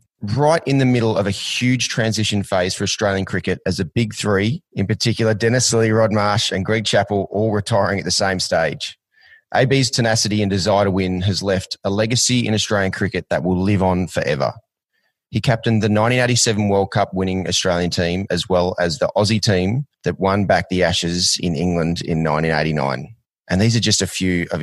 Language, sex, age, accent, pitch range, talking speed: English, male, 30-49, Australian, 90-115 Hz, 190 wpm